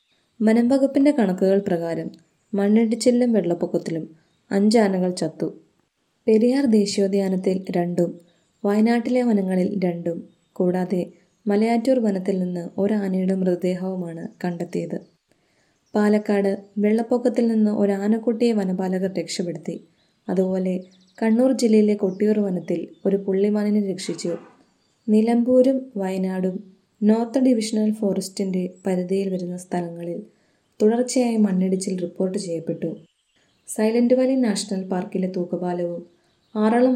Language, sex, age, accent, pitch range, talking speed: Malayalam, female, 20-39, native, 180-215 Hz, 85 wpm